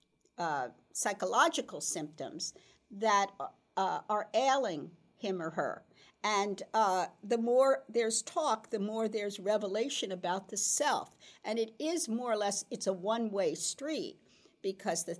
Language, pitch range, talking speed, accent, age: English, 190-240 Hz, 140 wpm, American, 50-69